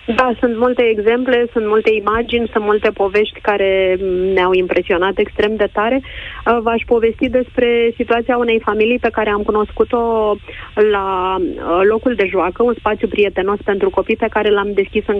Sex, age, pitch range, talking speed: female, 30-49, 175-215 Hz, 160 wpm